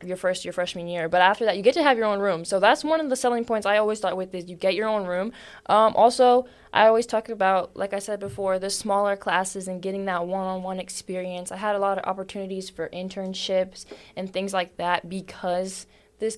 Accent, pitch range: American, 180-210 Hz